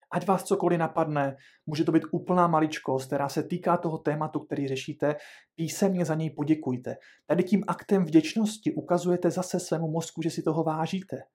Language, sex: Czech, male